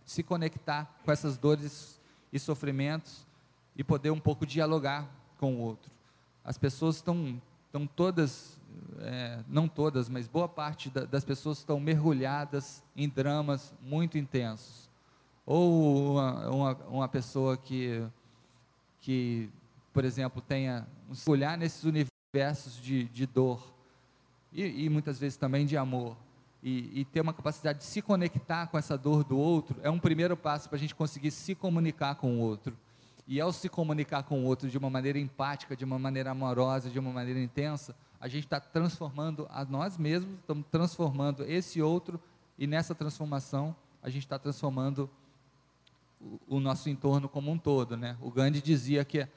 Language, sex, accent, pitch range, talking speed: Portuguese, male, Brazilian, 130-155 Hz, 160 wpm